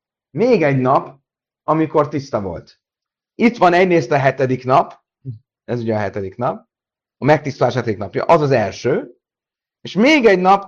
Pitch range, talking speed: 130-195 Hz, 155 wpm